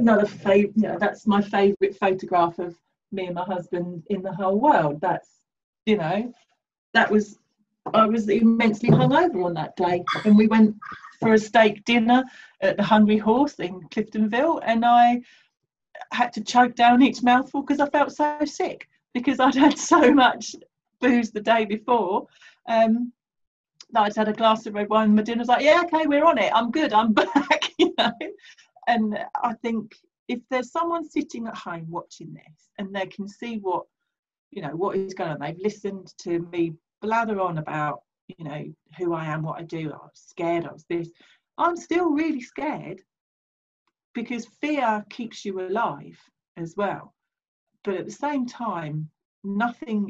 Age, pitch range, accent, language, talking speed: 40-59, 185-255 Hz, British, English, 175 wpm